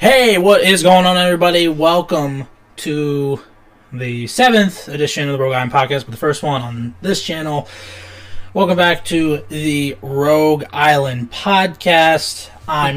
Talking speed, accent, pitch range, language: 145 wpm, American, 125-155 Hz, English